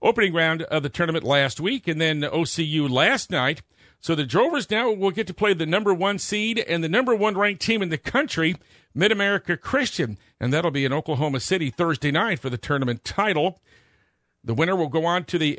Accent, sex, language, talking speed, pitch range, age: American, male, English, 210 wpm, 140-185 Hz, 50-69